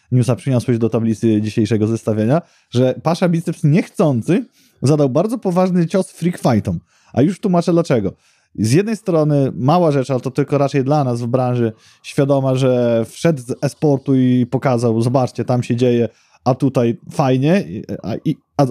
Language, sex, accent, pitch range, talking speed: Polish, male, native, 125-170 Hz, 160 wpm